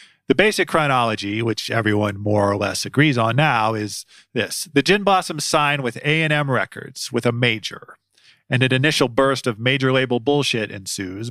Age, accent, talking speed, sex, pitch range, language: 40-59, American, 165 wpm, male, 105-140 Hz, English